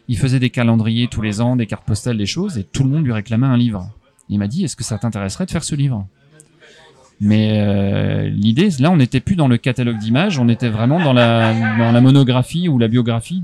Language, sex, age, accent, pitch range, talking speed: French, male, 30-49, French, 110-140 Hz, 245 wpm